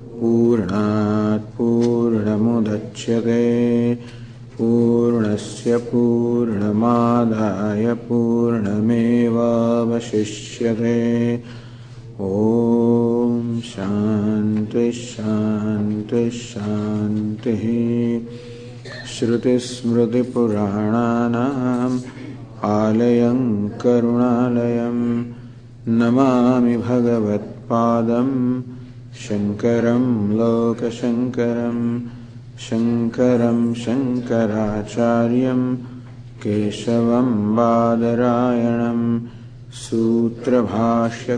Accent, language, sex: Indian, English, male